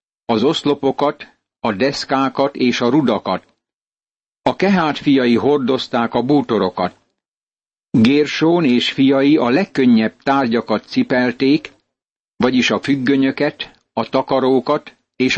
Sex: male